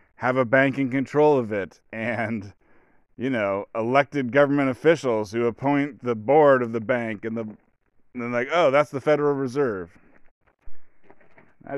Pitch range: 115-140 Hz